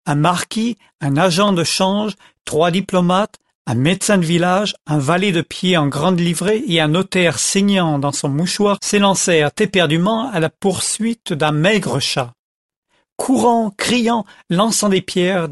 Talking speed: 150 wpm